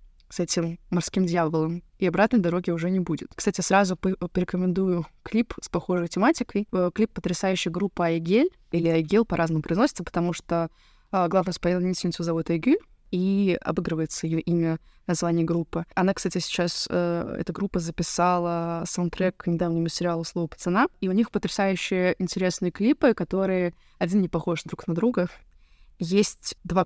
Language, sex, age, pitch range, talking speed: Russian, female, 20-39, 175-200 Hz, 145 wpm